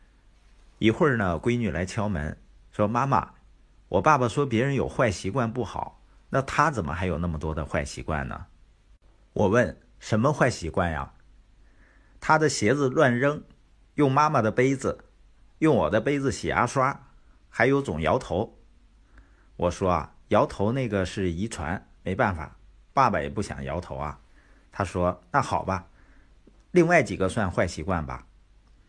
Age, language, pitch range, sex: 50-69, Chinese, 90-120 Hz, male